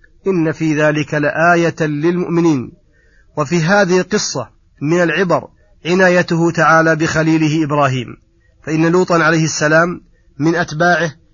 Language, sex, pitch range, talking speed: Arabic, male, 150-170 Hz, 105 wpm